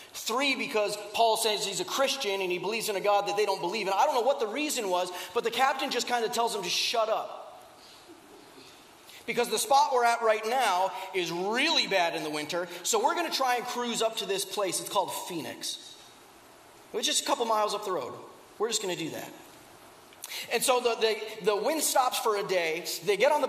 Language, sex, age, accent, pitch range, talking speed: English, male, 30-49, American, 215-295 Hz, 230 wpm